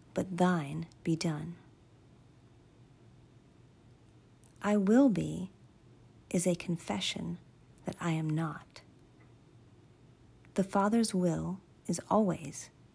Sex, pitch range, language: female, 135-195 Hz, English